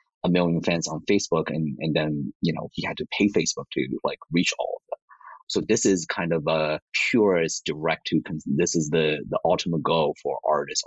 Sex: male